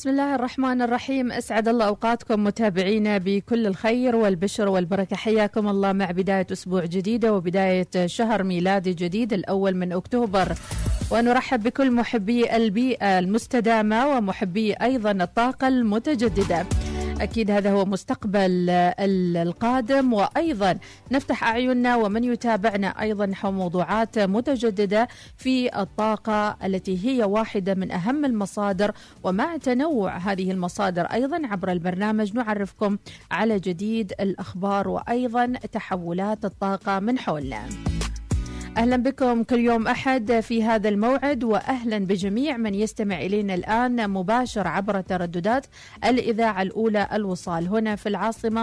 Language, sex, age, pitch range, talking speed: Arabic, female, 40-59, 195-245 Hz, 115 wpm